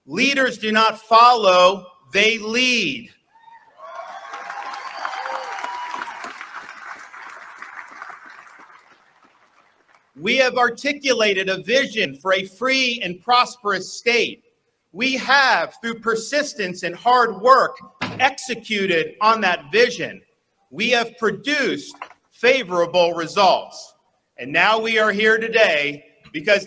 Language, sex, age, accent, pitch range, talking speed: English, male, 50-69, American, 180-240 Hz, 90 wpm